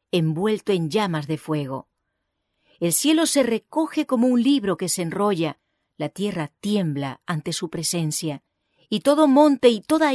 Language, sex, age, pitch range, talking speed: English, female, 40-59, 160-240 Hz, 155 wpm